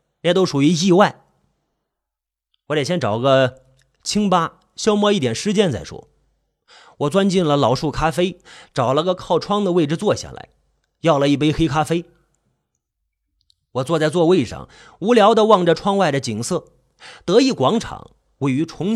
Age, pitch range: 30-49, 135-205 Hz